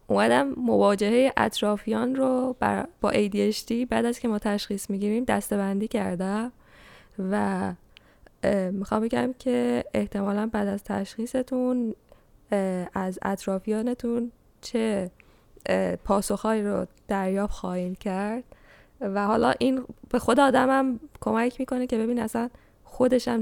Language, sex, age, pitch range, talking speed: English, female, 10-29, 205-240 Hz, 115 wpm